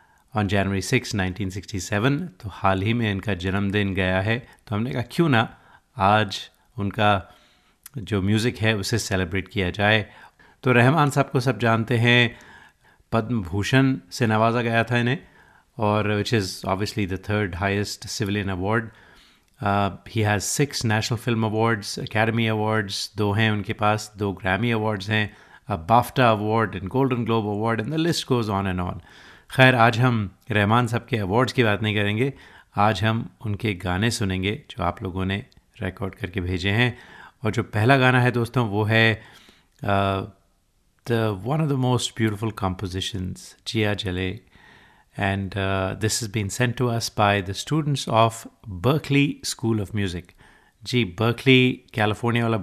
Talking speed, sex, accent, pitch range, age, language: 155 wpm, male, native, 100-120 Hz, 30-49, Hindi